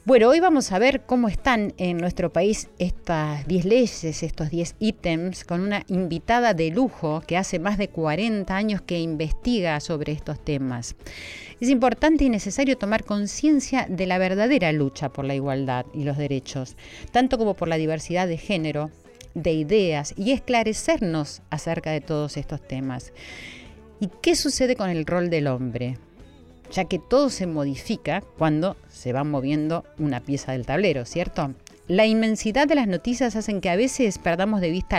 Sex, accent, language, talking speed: female, Argentinian, Spanish, 170 wpm